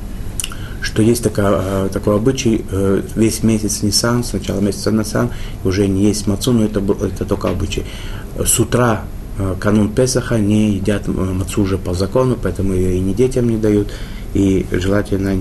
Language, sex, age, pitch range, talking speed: Russian, male, 30-49, 95-110 Hz, 160 wpm